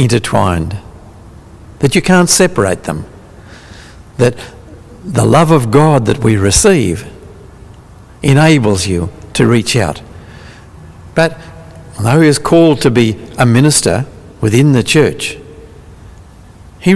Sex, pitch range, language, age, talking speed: male, 90-140 Hz, English, 60-79, 115 wpm